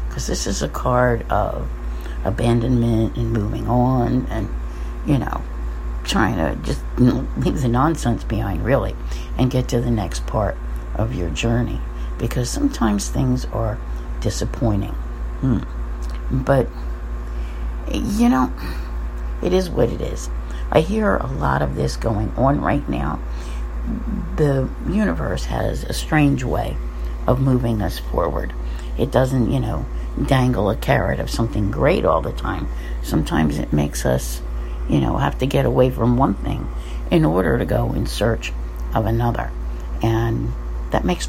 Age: 60-79